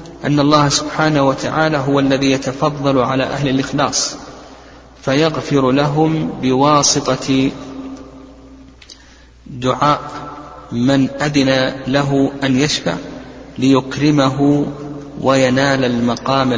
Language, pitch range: Arabic, 125-145 Hz